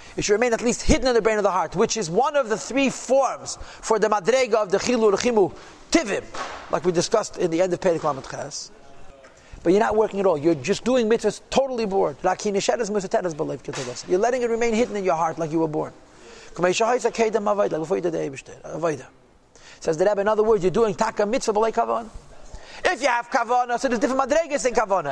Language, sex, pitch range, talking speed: English, male, 185-240 Hz, 185 wpm